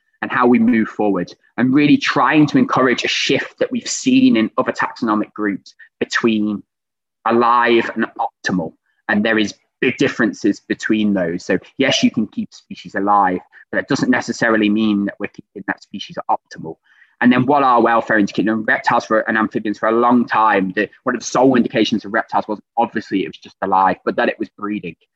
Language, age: English, 20-39